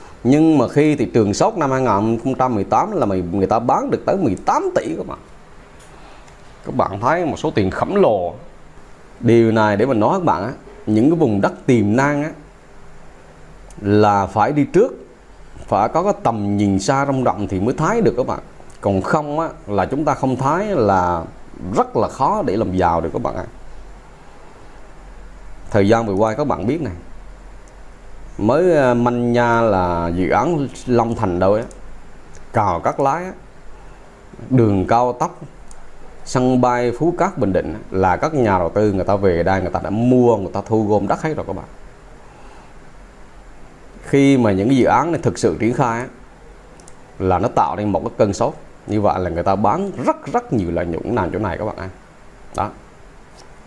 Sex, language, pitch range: male, Vietnamese, 95-130 Hz